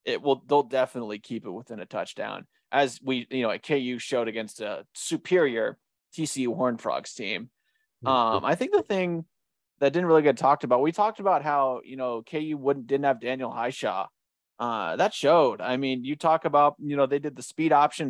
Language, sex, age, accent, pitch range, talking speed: English, male, 20-39, American, 130-160 Hz, 200 wpm